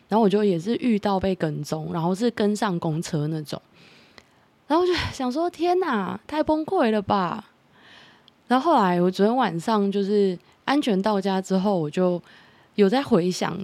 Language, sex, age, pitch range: Chinese, female, 20-39, 170-210 Hz